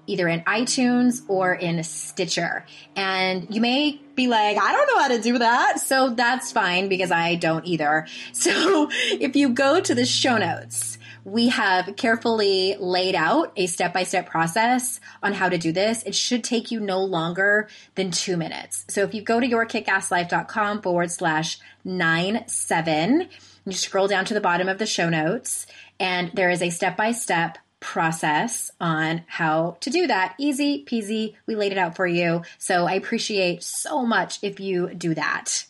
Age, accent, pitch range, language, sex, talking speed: 20-39, American, 170-225 Hz, English, female, 175 wpm